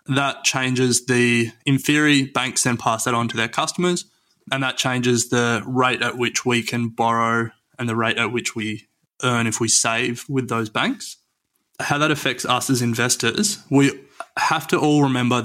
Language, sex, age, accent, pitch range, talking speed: English, male, 20-39, Australian, 120-135 Hz, 185 wpm